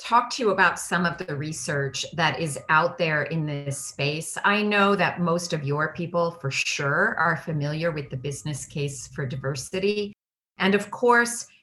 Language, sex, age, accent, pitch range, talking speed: English, female, 40-59, American, 145-185 Hz, 180 wpm